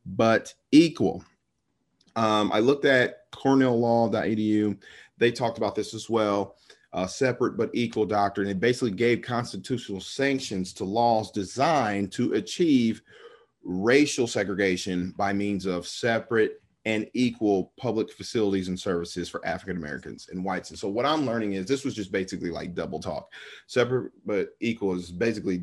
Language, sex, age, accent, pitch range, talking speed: English, male, 40-59, American, 95-120 Hz, 145 wpm